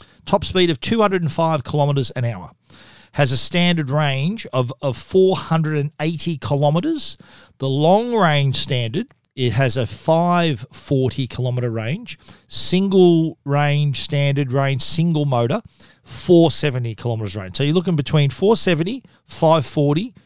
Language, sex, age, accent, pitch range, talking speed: English, male, 40-59, Australian, 125-165 Hz, 120 wpm